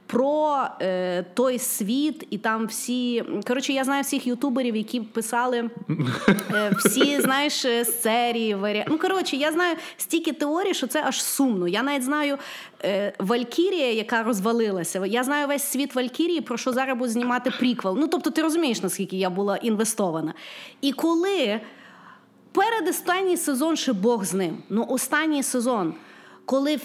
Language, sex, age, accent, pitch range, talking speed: Ukrainian, female, 30-49, native, 220-280 Hz, 150 wpm